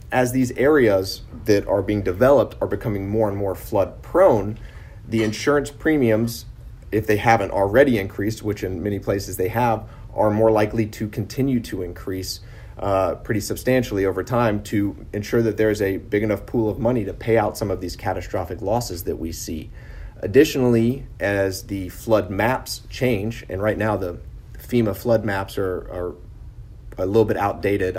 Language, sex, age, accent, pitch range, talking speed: English, male, 30-49, American, 95-115 Hz, 175 wpm